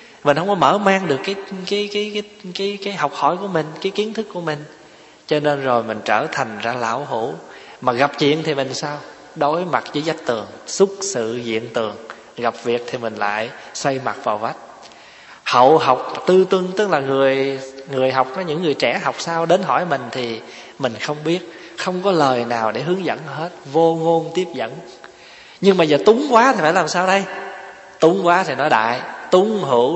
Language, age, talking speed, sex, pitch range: Vietnamese, 20-39, 210 wpm, male, 130-185 Hz